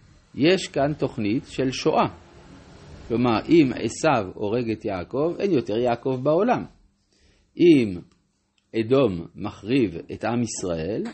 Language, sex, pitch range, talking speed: Hebrew, male, 120-175 Hz, 115 wpm